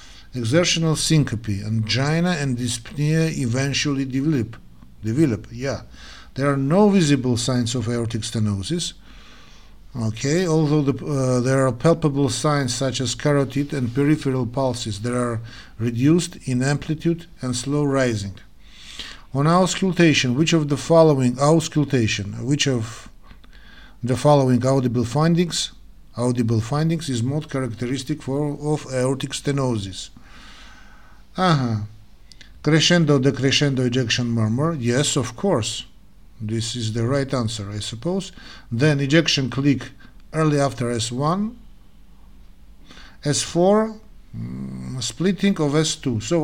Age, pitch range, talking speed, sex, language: 50-69, 120-155 Hz, 115 wpm, male, English